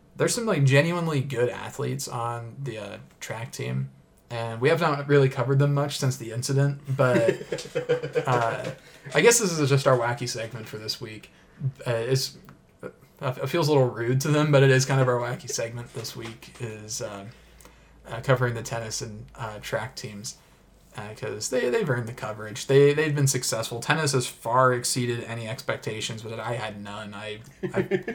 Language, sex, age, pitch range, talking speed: English, male, 20-39, 115-135 Hz, 190 wpm